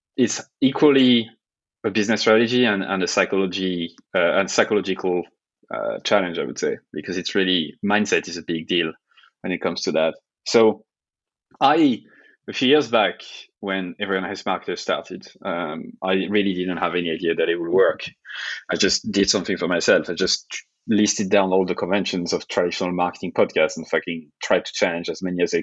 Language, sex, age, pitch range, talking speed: English, male, 20-39, 90-115 Hz, 185 wpm